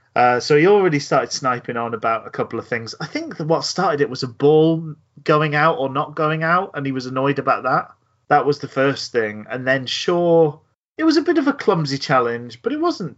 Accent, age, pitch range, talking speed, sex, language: British, 30-49, 115-145 Hz, 235 wpm, male, English